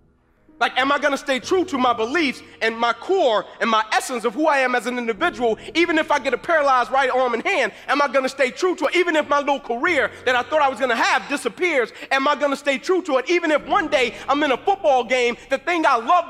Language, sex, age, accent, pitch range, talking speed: English, male, 30-49, American, 235-320 Hz, 280 wpm